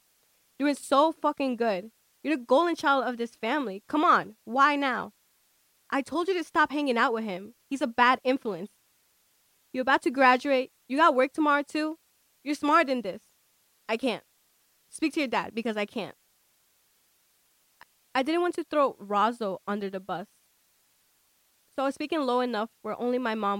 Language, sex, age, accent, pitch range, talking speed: English, female, 20-39, American, 225-295 Hz, 175 wpm